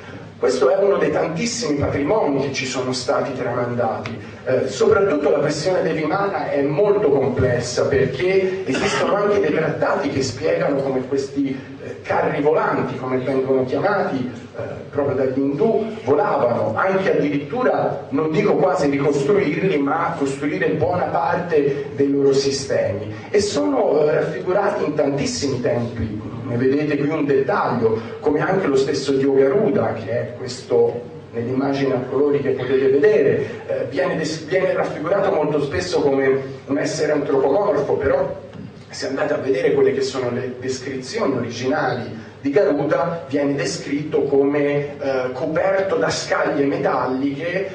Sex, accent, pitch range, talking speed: male, native, 130-170 Hz, 135 wpm